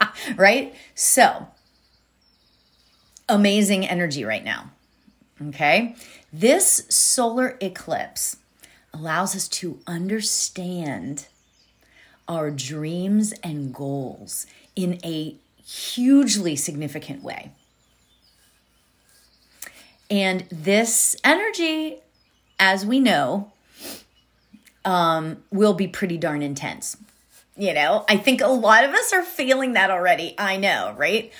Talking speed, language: 95 wpm, English